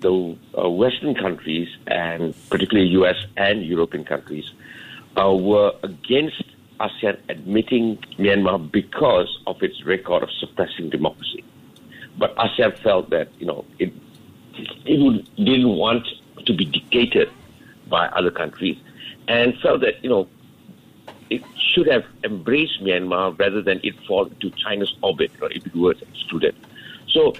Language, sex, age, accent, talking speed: English, male, 60-79, Malaysian, 140 wpm